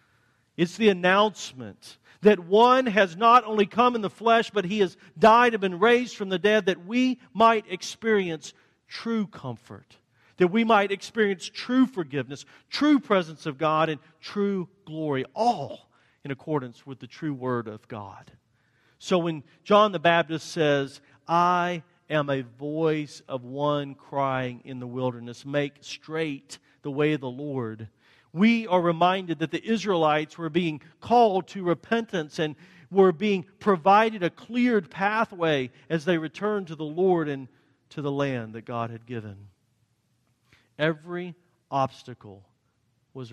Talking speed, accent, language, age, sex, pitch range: 150 wpm, American, English, 40-59, male, 120-180 Hz